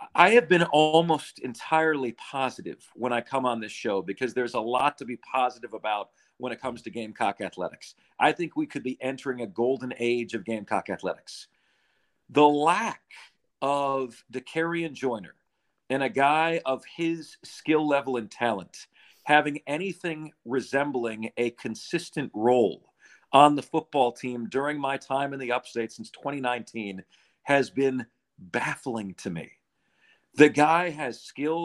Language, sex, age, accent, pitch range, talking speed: English, male, 40-59, American, 130-175 Hz, 150 wpm